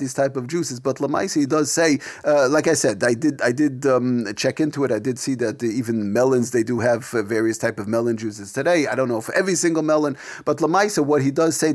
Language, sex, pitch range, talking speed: English, male, 125-160 Hz, 255 wpm